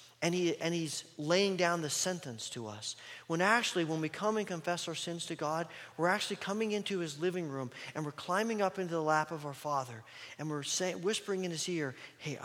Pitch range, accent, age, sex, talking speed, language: 130-175 Hz, American, 40-59, male, 220 wpm, English